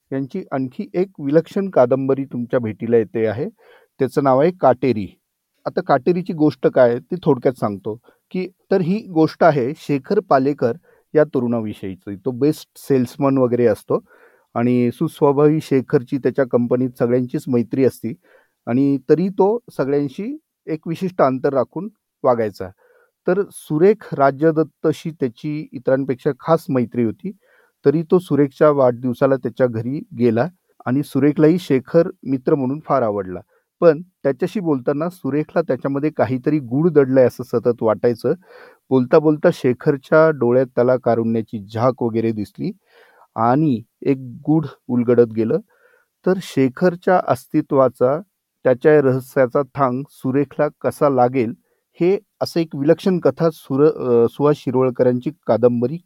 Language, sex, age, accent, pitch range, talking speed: Marathi, male, 40-59, native, 125-160 Hz, 125 wpm